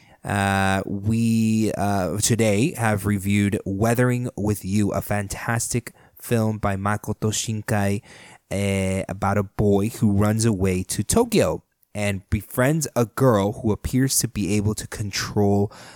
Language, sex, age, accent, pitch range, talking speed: English, male, 20-39, American, 95-115 Hz, 130 wpm